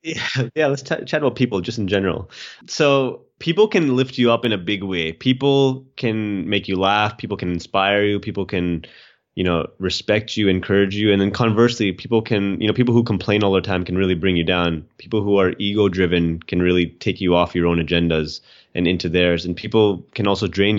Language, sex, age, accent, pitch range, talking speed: English, male, 20-39, American, 90-105 Hz, 220 wpm